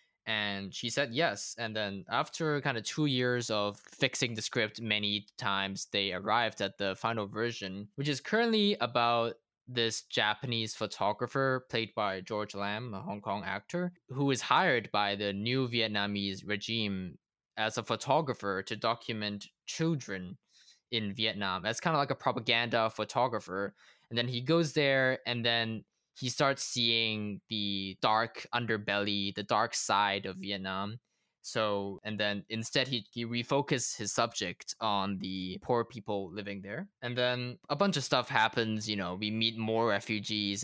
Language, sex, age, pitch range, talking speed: English, male, 20-39, 100-125 Hz, 160 wpm